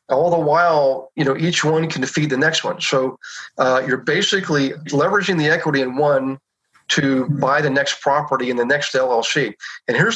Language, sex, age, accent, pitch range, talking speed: English, male, 40-59, American, 135-160 Hz, 190 wpm